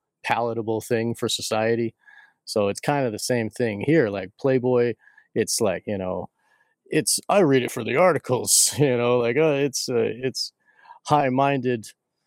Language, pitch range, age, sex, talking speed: English, 105-125 Hz, 30-49, male, 165 wpm